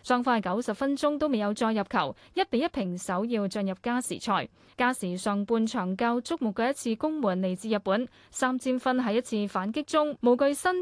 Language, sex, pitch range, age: Chinese, female, 200-255 Hz, 20-39